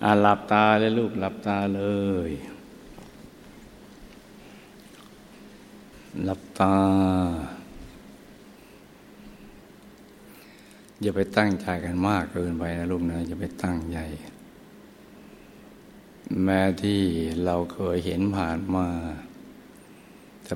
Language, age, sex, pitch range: Thai, 60-79, male, 85-95 Hz